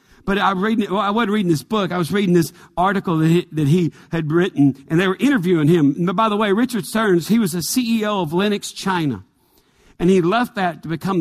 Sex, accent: male, American